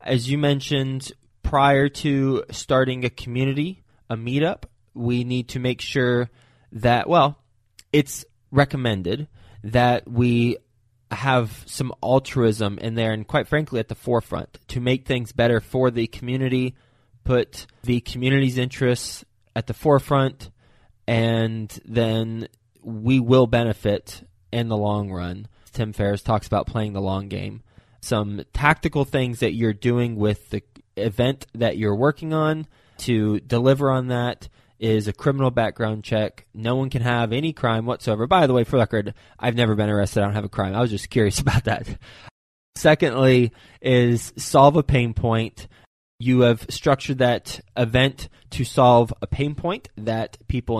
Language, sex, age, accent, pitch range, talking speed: English, male, 20-39, American, 110-130 Hz, 155 wpm